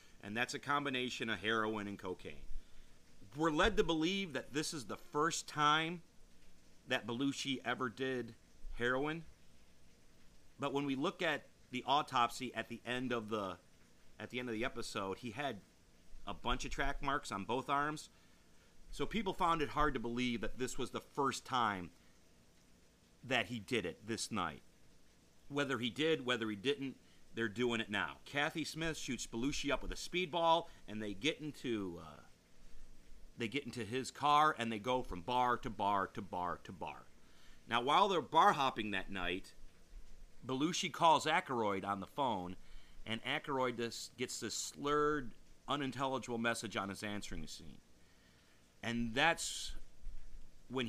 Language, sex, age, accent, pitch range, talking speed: English, male, 40-59, American, 105-145 Hz, 160 wpm